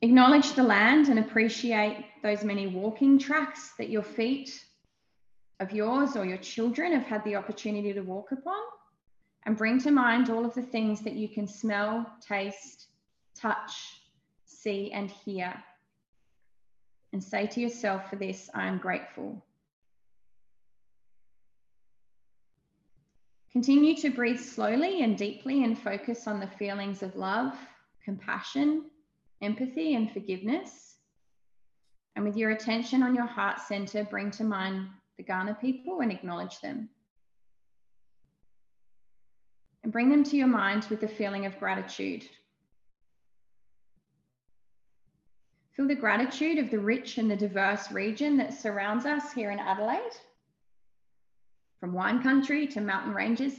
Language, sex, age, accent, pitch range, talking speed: English, female, 20-39, Australian, 200-255 Hz, 130 wpm